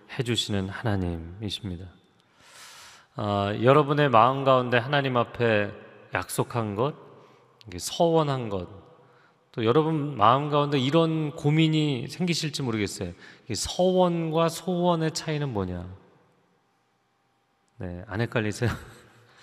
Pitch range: 105-145 Hz